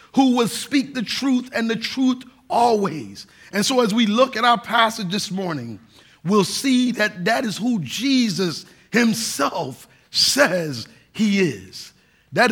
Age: 50-69